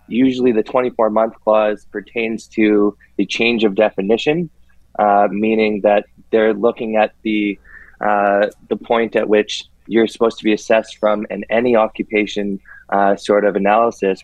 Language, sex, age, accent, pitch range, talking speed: English, male, 20-39, American, 105-120 Hz, 150 wpm